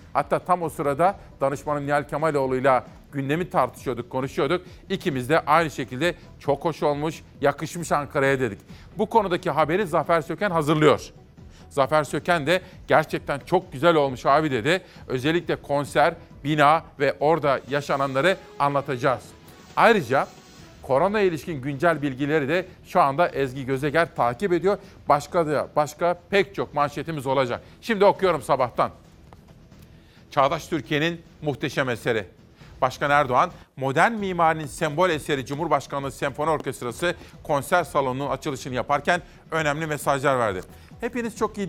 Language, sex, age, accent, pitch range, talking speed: Turkish, male, 40-59, native, 140-175 Hz, 125 wpm